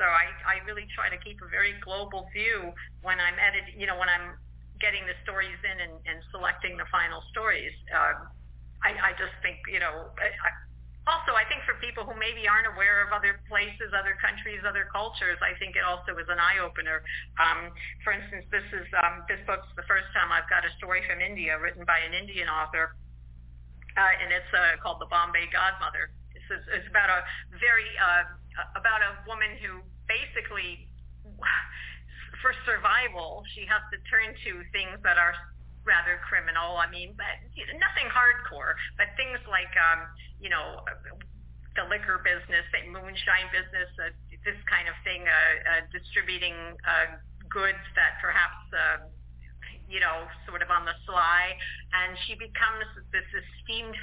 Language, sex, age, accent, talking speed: English, female, 50-69, American, 175 wpm